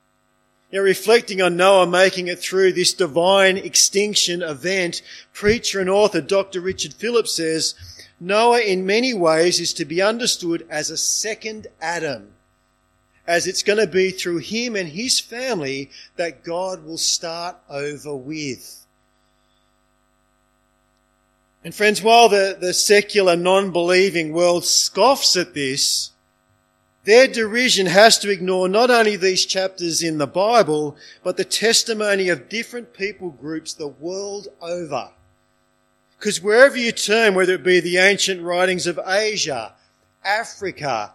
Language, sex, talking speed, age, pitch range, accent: English, male, 135 wpm, 40-59, 170-205 Hz, Australian